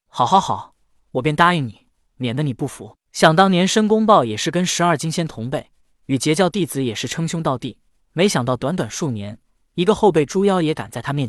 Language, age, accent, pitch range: Chinese, 20-39, native, 135-205 Hz